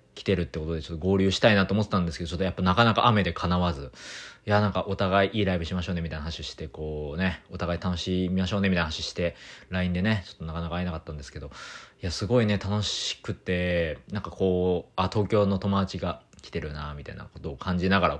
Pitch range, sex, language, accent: 80-105 Hz, male, Japanese, native